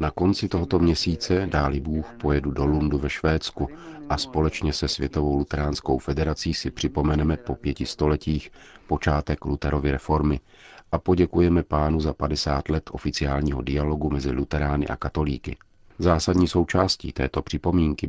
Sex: male